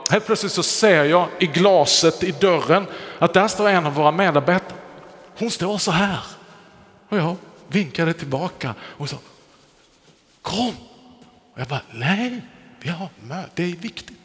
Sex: male